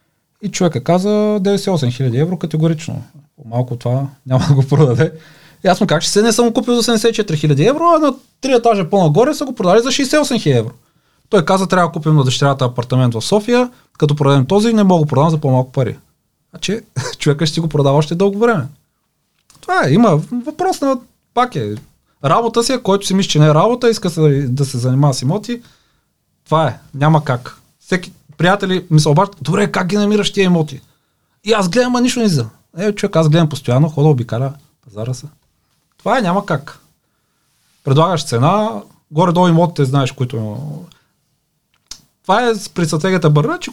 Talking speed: 190 wpm